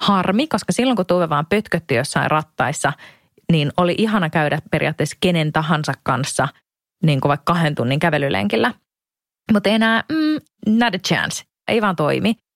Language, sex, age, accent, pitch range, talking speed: Finnish, female, 20-39, native, 155-205 Hz, 155 wpm